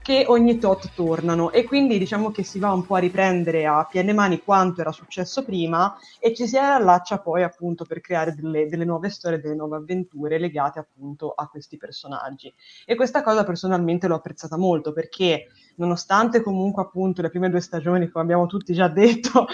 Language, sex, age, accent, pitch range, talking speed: Italian, female, 20-39, native, 165-200 Hz, 185 wpm